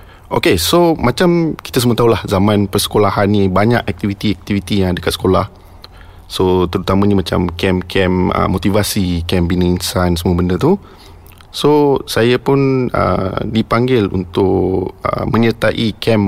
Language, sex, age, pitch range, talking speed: Malay, male, 30-49, 95-110 Hz, 135 wpm